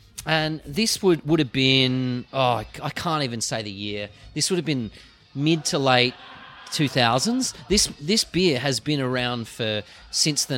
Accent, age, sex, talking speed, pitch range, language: Australian, 30-49, male, 175 wpm, 115-150 Hz, English